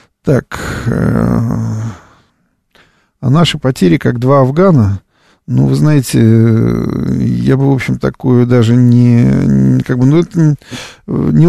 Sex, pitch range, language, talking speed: male, 110-130 Hz, Russian, 115 wpm